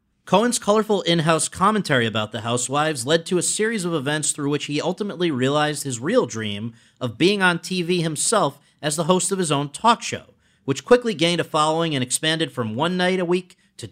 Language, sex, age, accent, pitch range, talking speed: English, male, 40-59, American, 135-185 Hz, 205 wpm